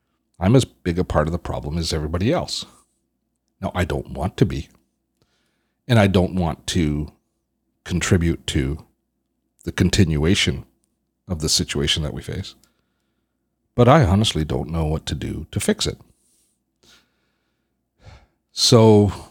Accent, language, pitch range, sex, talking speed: American, English, 75-95 Hz, male, 135 wpm